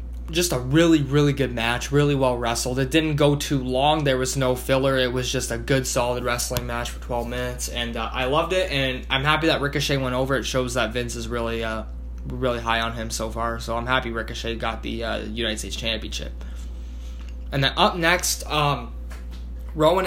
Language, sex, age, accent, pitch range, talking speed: English, male, 10-29, American, 115-140 Hz, 210 wpm